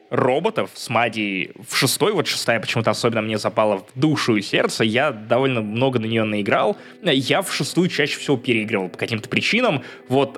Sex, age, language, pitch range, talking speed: male, 20-39, Russian, 115-165 Hz, 180 wpm